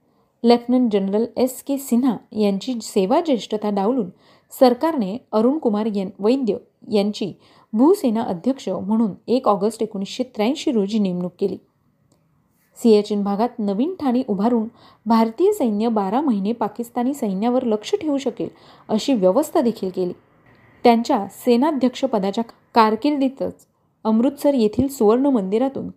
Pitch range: 210-260 Hz